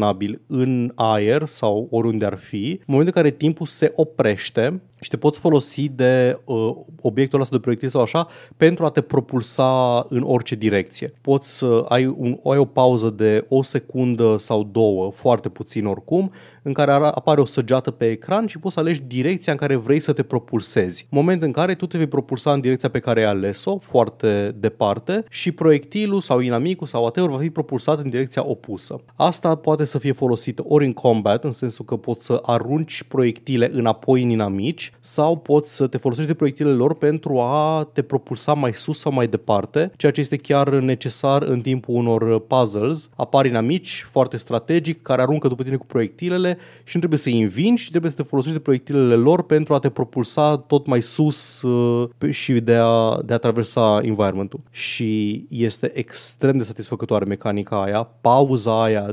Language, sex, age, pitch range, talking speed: Romanian, male, 30-49, 115-150 Hz, 185 wpm